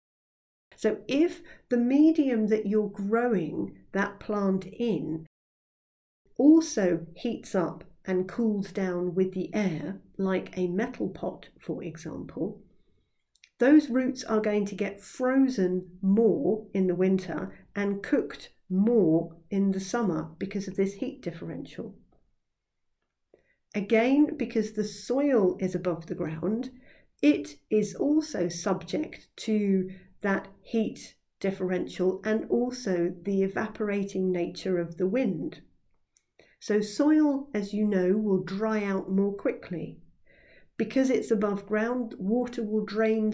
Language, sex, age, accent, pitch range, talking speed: English, female, 40-59, British, 190-230 Hz, 120 wpm